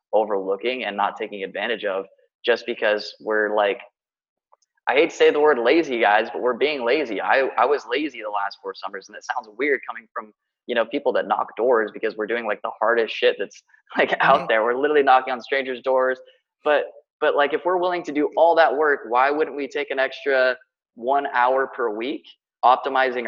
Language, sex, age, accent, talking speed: English, male, 20-39, American, 210 wpm